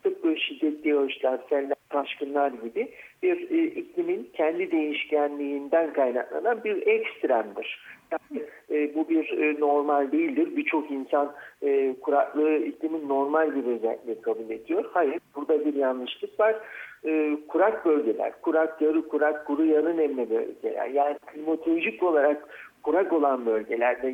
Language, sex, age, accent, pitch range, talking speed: Turkish, male, 50-69, native, 145-225 Hz, 130 wpm